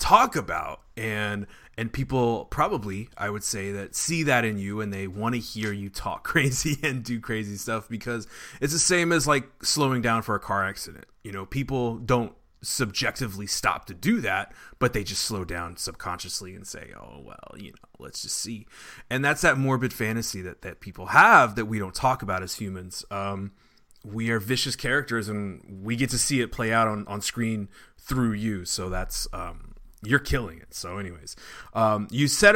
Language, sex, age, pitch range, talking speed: English, male, 20-39, 100-135 Hz, 195 wpm